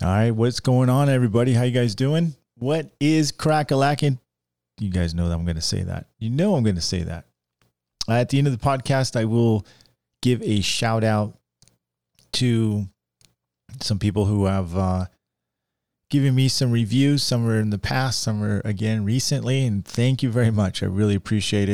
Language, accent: English, American